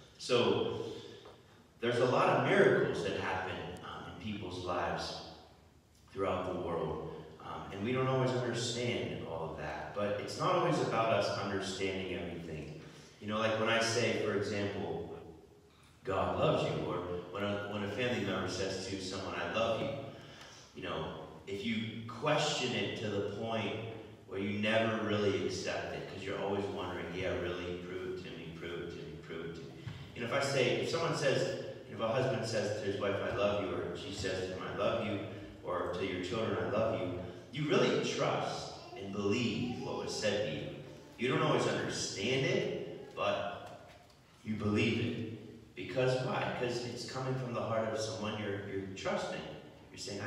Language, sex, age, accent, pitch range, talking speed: English, male, 30-49, American, 95-120 Hz, 185 wpm